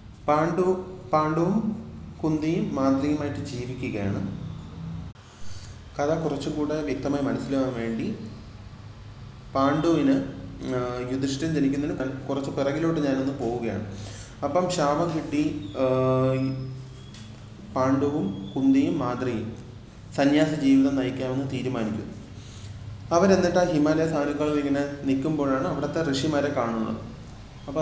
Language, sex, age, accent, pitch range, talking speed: Malayalam, male, 30-49, native, 115-145 Hz, 80 wpm